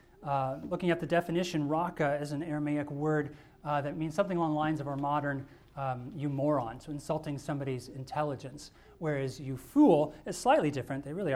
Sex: male